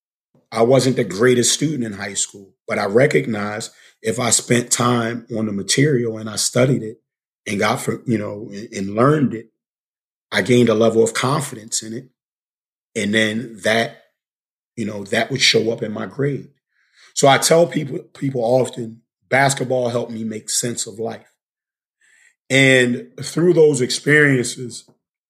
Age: 40-59